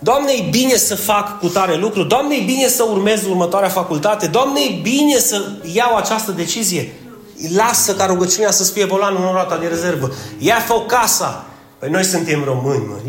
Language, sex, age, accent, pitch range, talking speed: Romanian, male, 30-49, native, 200-275 Hz, 185 wpm